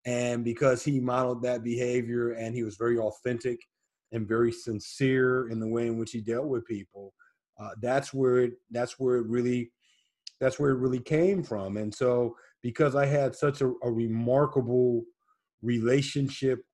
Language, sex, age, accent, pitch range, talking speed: English, male, 30-49, American, 115-130 Hz, 170 wpm